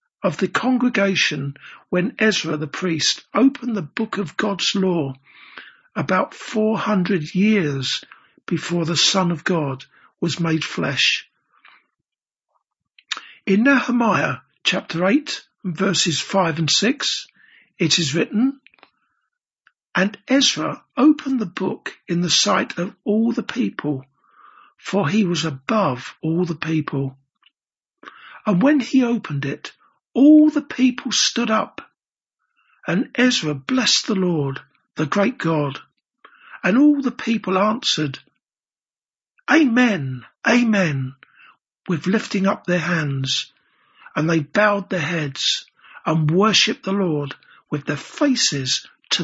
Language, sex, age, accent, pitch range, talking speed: English, male, 60-79, British, 160-235 Hz, 120 wpm